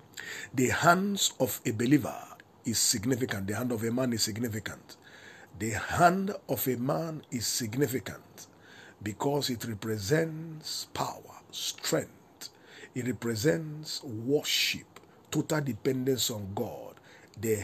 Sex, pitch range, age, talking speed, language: male, 120-155 Hz, 50-69, 115 wpm, English